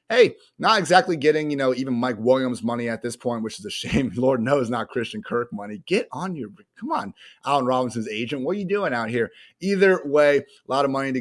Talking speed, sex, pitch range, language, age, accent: 235 wpm, male, 110-150 Hz, English, 30-49, American